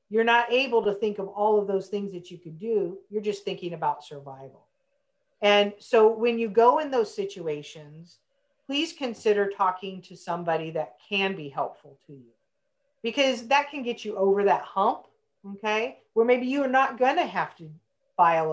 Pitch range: 175-250 Hz